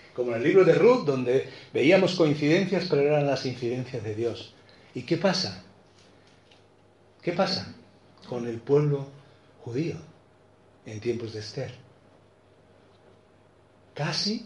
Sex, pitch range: male, 105-135 Hz